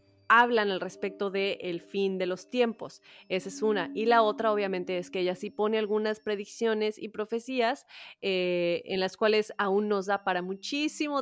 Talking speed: 175 wpm